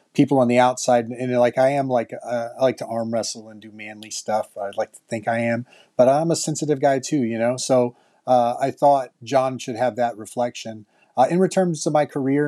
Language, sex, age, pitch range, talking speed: English, male, 30-49, 115-135 Hz, 235 wpm